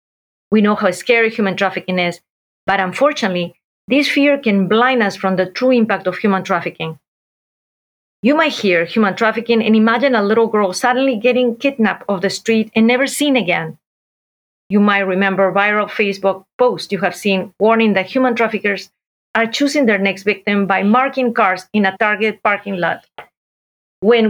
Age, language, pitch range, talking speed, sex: 40-59, English, 185-230 Hz, 170 wpm, female